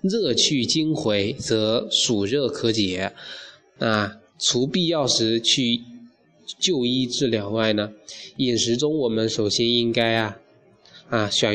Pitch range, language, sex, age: 110-140 Hz, Chinese, male, 20-39